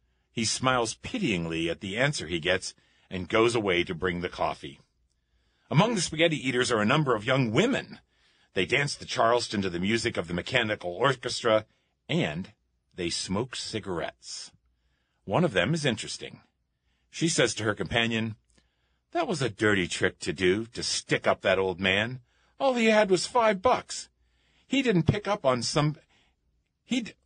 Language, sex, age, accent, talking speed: English, male, 50-69, American, 165 wpm